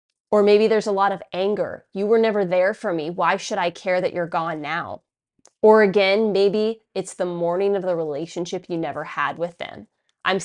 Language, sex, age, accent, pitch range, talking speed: English, female, 20-39, American, 175-210 Hz, 205 wpm